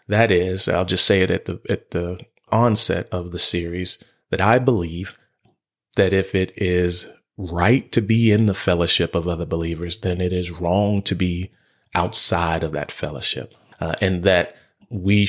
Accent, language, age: American, English, 30-49